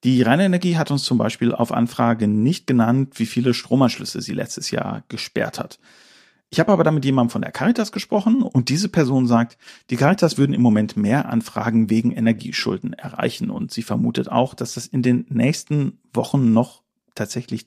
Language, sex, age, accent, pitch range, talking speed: German, male, 40-59, German, 115-170 Hz, 185 wpm